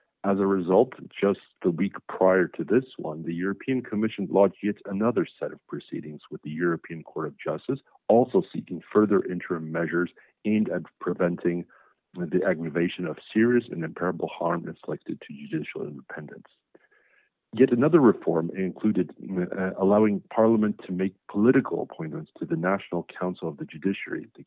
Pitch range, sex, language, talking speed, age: 85-110 Hz, male, English, 150 wpm, 50-69